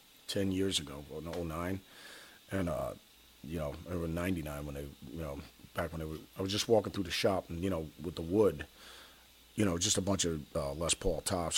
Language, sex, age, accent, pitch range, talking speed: English, male, 40-59, American, 80-95 Hz, 225 wpm